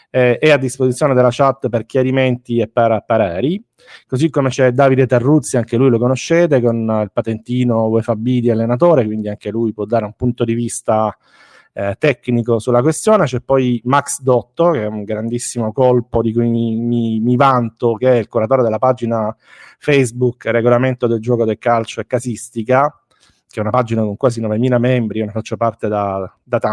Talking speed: 185 wpm